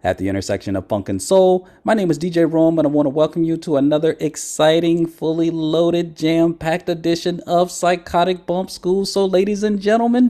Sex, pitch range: male, 110-155 Hz